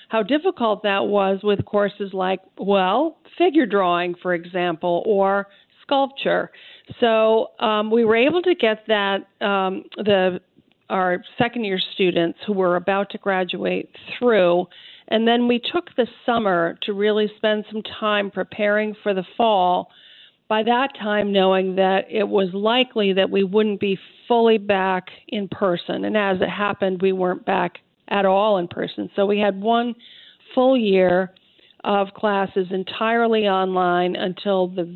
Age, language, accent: 40-59, English, American